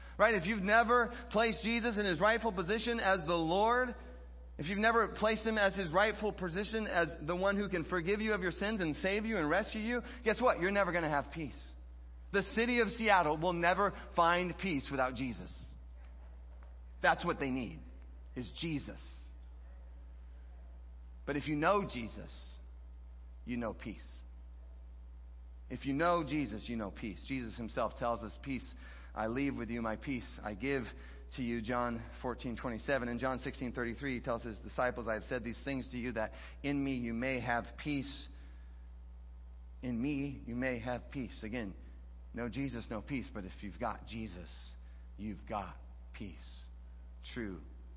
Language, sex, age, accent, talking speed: English, male, 30-49, American, 170 wpm